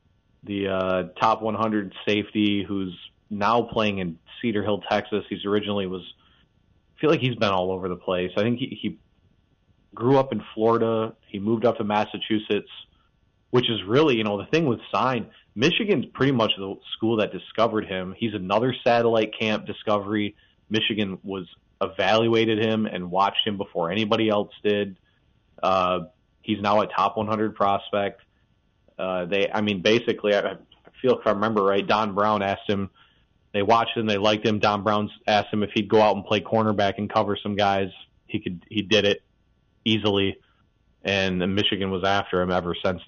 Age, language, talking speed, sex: 30-49, English, 175 wpm, male